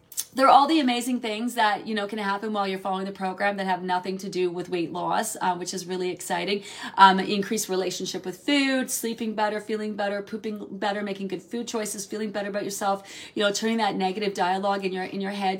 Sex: female